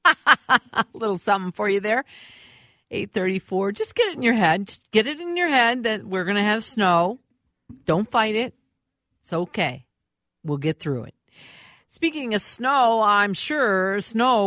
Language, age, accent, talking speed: English, 50-69, American, 165 wpm